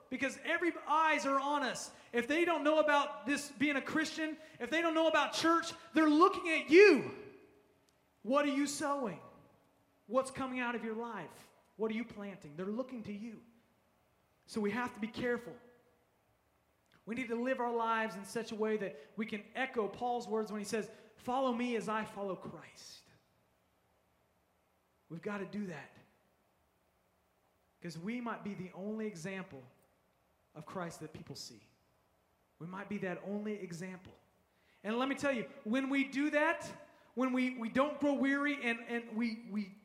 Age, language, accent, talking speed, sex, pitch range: 30-49, English, American, 175 wpm, male, 215-275 Hz